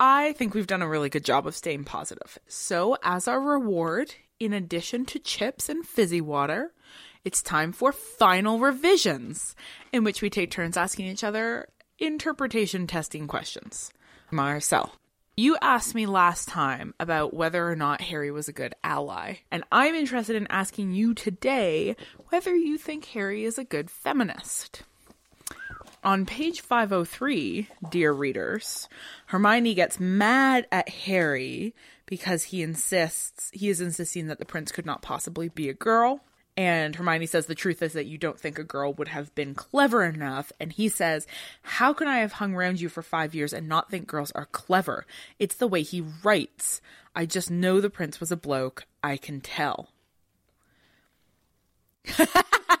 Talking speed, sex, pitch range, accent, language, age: 165 wpm, female, 160-240 Hz, American, English, 20-39